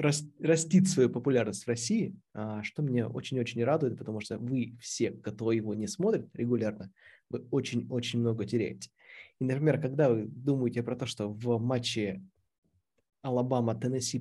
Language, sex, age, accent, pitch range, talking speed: Russian, male, 20-39, native, 115-135 Hz, 140 wpm